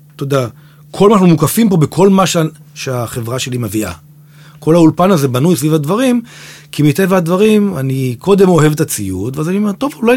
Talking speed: 185 wpm